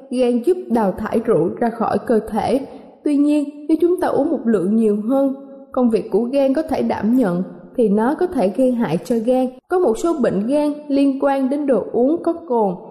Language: Vietnamese